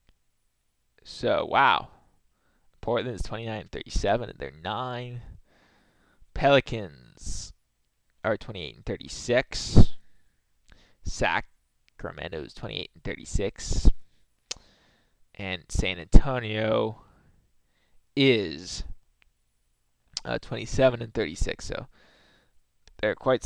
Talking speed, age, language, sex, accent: 80 wpm, 20-39, English, male, American